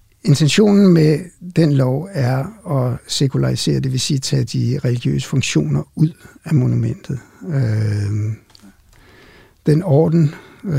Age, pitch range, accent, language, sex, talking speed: 60-79, 120-145 Hz, native, Danish, male, 110 wpm